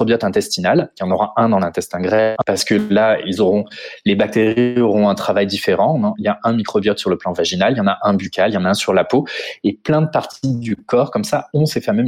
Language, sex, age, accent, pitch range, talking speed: French, male, 20-39, French, 110-145 Hz, 275 wpm